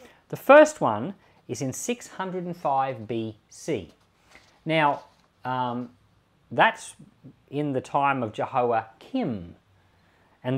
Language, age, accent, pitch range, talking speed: English, 40-59, Australian, 110-155 Hz, 90 wpm